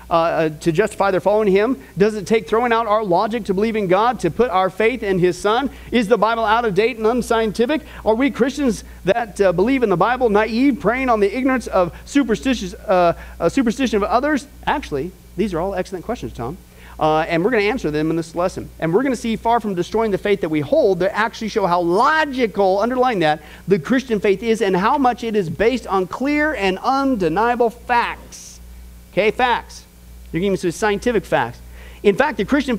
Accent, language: American, English